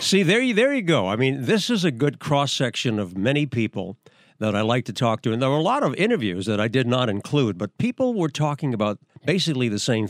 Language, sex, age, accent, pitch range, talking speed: English, male, 50-69, American, 120-165 Hz, 245 wpm